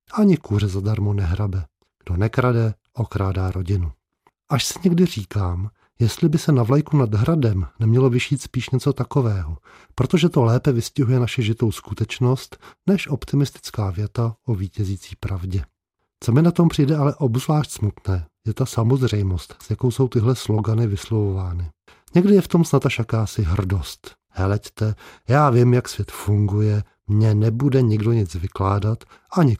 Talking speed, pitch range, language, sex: 150 wpm, 100-130 Hz, Czech, male